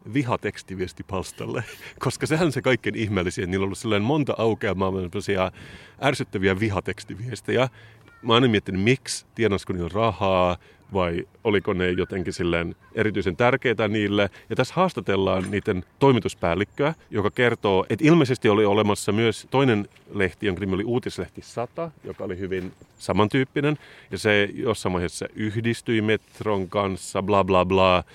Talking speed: 135 wpm